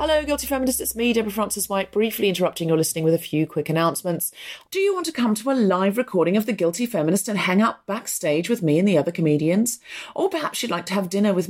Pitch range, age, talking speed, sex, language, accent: 165-235 Hz, 40-59, 245 wpm, female, English, British